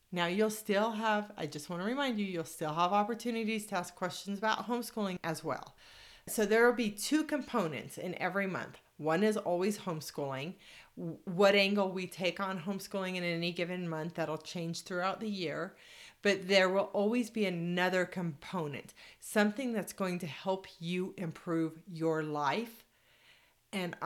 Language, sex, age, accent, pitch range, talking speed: English, female, 40-59, American, 165-210 Hz, 165 wpm